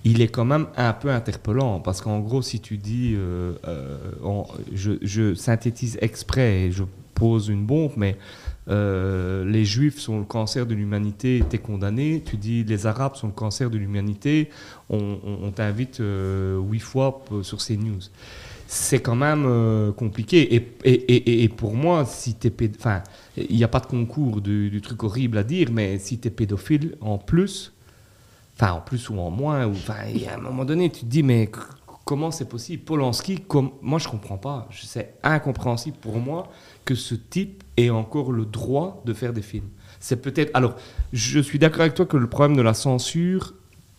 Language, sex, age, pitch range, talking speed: French, male, 40-59, 105-135 Hz, 190 wpm